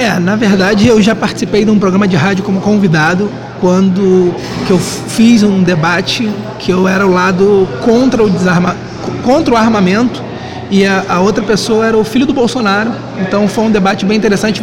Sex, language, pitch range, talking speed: male, Portuguese, 185-220 Hz, 190 wpm